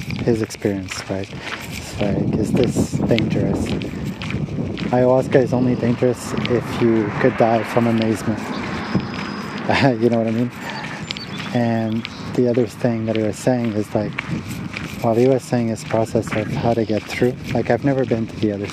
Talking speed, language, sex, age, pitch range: 165 wpm, English, male, 30-49, 105-125 Hz